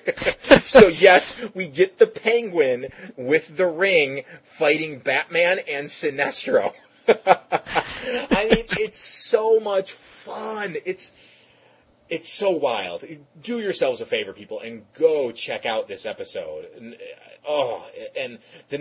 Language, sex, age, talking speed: English, male, 30-49, 120 wpm